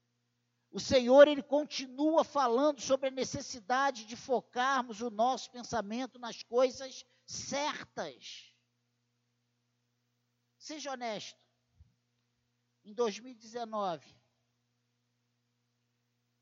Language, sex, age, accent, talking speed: Portuguese, male, 50-69, Brazilian, 75 wpm